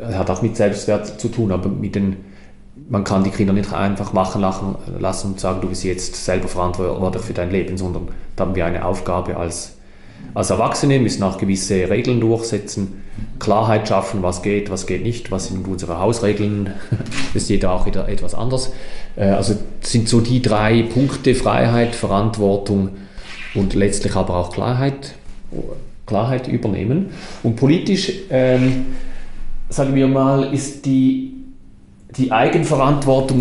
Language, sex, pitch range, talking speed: German, male, 95-115 Hz, 155 wpm